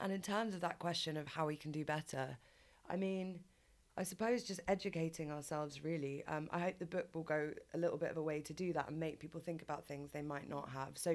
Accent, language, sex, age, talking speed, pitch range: British, English, female, 20-39, 255 wpm, 150-165 Hz